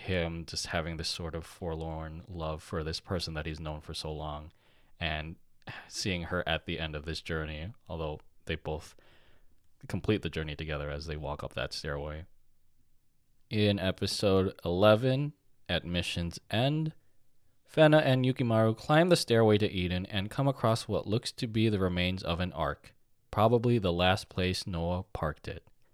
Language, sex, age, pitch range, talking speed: English, male, 20-39, 90-120 Hz, 165 wpm